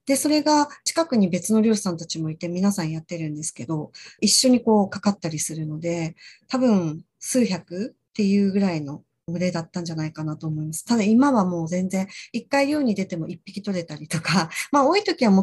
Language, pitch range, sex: Japanese, 165-215 Hz, female